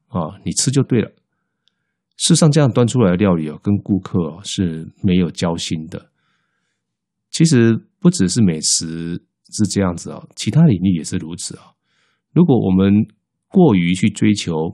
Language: Chinese